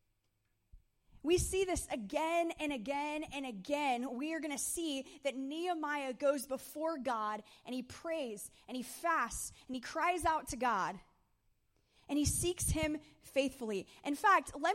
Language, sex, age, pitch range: English, female, 20-39, 235-310 Hz